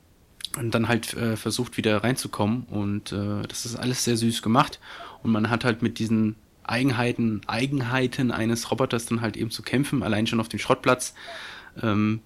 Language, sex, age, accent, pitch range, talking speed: German, male, 20-39, German, 105-125 Hz, 175 wpm